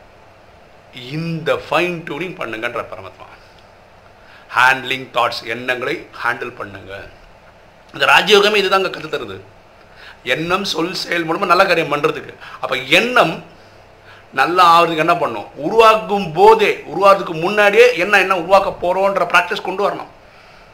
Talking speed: 110 wpm